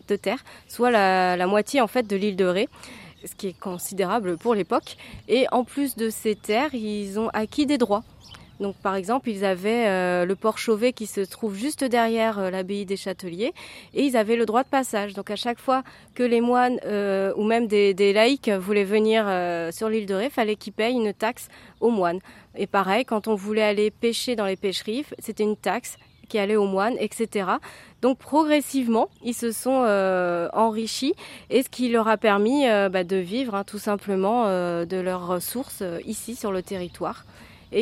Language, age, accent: French, 30-49, French